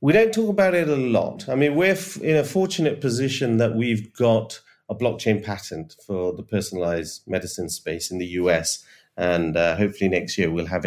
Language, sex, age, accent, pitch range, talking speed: English, male, 30-49, British, 95-125 Hz, 200 wpm